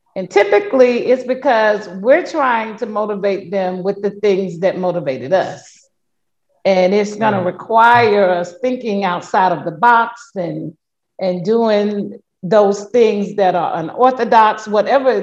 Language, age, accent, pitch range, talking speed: English, 40-59, American, 180-225 Hz, 135 wpm